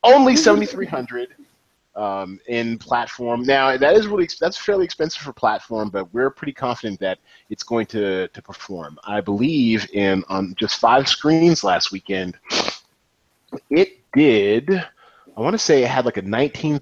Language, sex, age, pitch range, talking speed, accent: English, male, 30-49, 115-165 Hz, 165 wpm, American